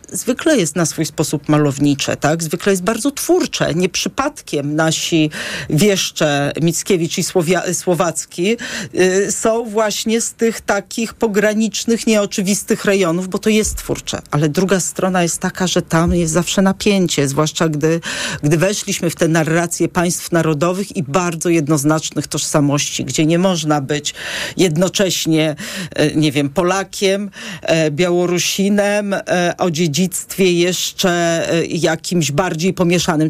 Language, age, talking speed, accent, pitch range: Polish, 40-59, 125 wpm, native, 160-200 Hz